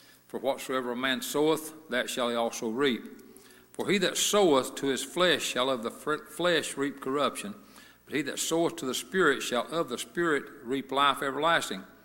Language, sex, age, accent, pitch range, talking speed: English, male, 60-79, American, 130-165 Hz, 190 wpm